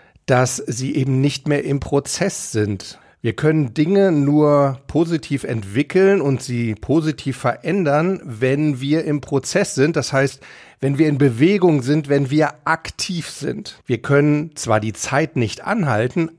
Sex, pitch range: male, 135-170 Hz